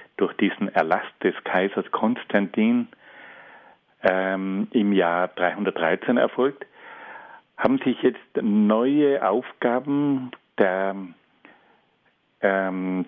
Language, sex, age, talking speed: German, male, 50-69, 85 wpm